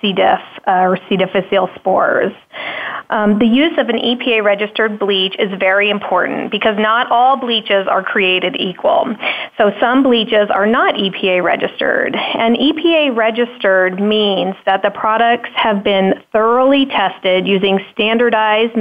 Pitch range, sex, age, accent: 195-235 Hz, female, 30-49, American